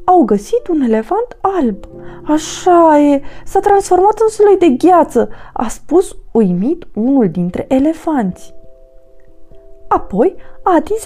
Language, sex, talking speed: Romanian, female, 120 wpm